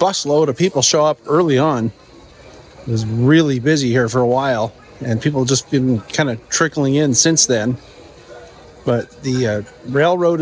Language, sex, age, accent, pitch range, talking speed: English, male, 40-59, American, 130-165 Hz, 175 wpm